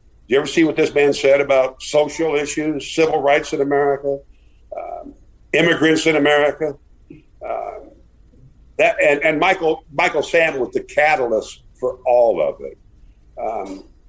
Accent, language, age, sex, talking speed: American, English, 50-69, male, 140 wpm